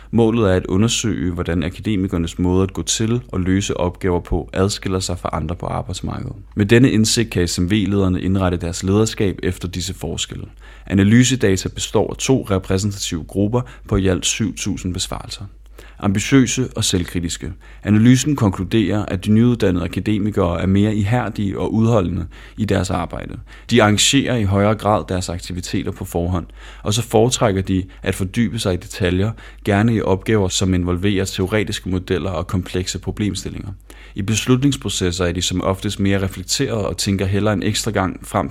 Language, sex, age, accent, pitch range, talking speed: Danish, male, 30-49, native, 90-105 Hz, 160 wpm